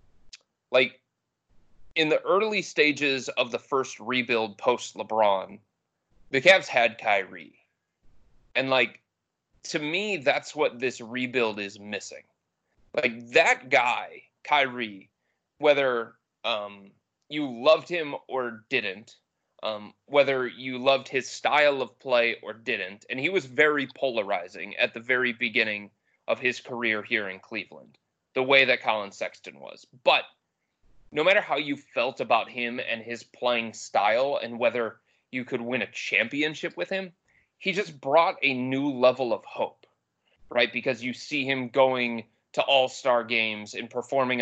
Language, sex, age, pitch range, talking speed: English, male, 30-49, 115-135 Hz, 145 wpm